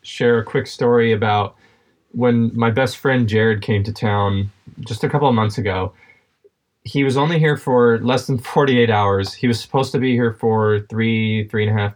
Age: 20-39